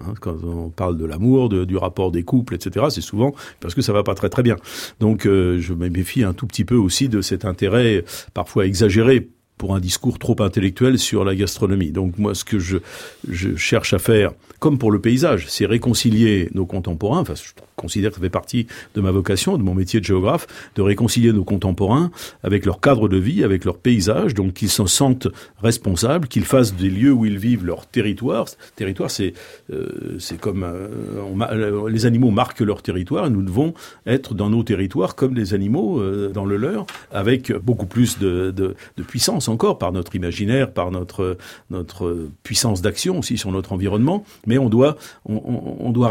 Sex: male